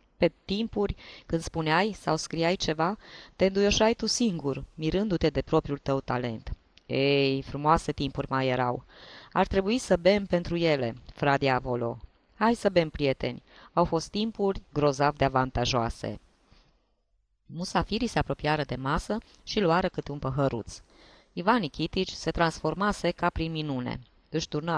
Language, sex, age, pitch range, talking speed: Romanian, female, 20-39, 135-185 Hz, 135 wpm